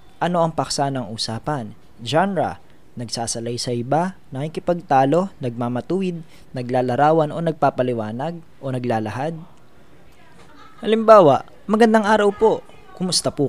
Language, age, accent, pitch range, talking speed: Filipino, 20-39, native, 135-170 Hz, 100 wpm